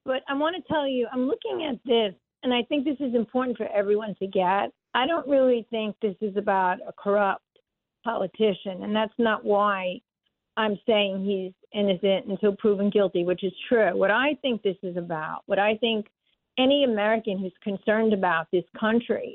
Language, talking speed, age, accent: English, 185 wpm, 50-69, American